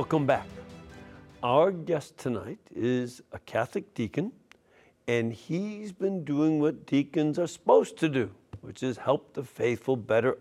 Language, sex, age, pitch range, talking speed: English, male, 60-79, 115-155 Hz, 145 wpm